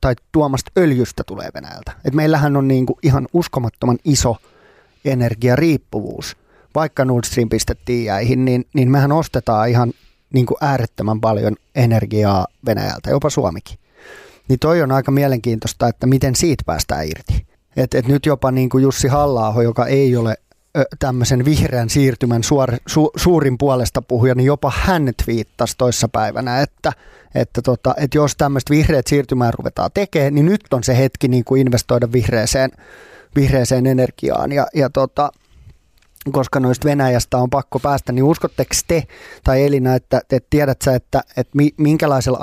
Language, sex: Finnish, male